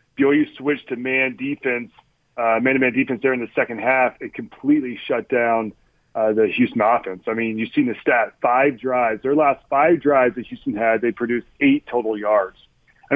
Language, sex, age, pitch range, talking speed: English, male, 30-49, 120-145 Hz, 200 wpm